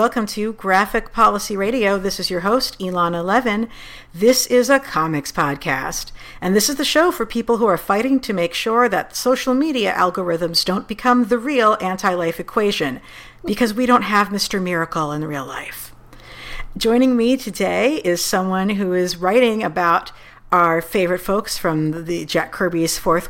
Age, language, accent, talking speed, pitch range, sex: 50-69, English, American, 165 wpm, 170-235 Hz, female